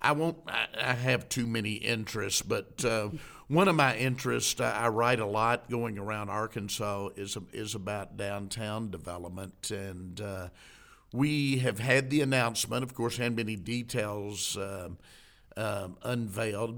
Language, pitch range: English, 105-130 Hz